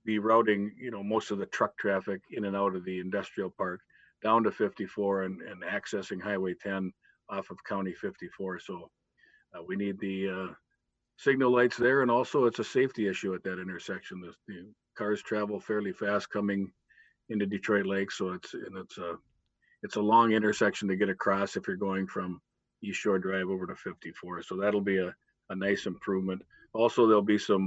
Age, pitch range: 50-69, 95-105 Hz